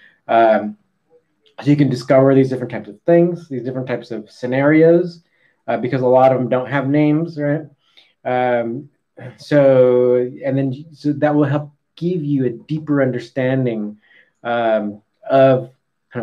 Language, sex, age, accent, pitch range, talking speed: English, male, 20-39, American, 110-135 Hz, 150 wpm